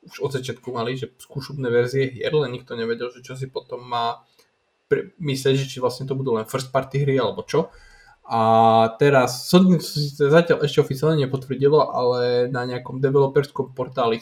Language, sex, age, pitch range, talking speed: Slovak, male, 20-39, 125-150 Hz, 170 wpm